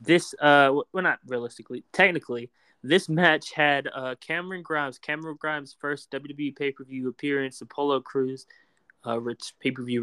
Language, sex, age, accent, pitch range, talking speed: English, male, 20-39, American, 130-155 Hz, 155 wpm